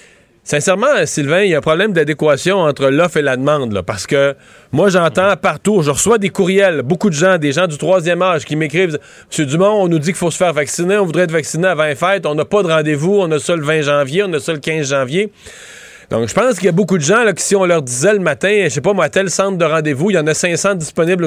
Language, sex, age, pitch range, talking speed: French, male, 30-49, 155-195 Hz, 280 wpm